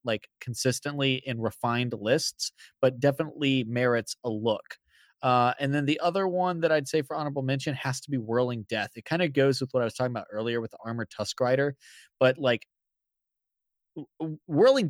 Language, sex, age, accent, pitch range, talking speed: English, male, 20-39, American, 125-160 Hz, 185 wpm